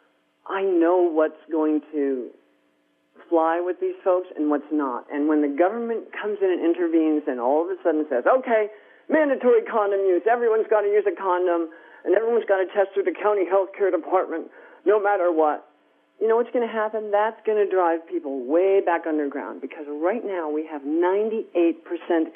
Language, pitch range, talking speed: English, 155-215 Hz, 190 wpm